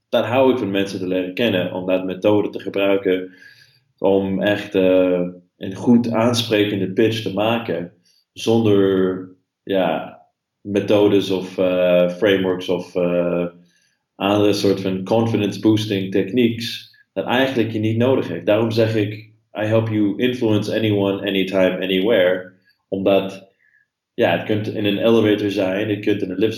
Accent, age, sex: Dutch, 20-39, male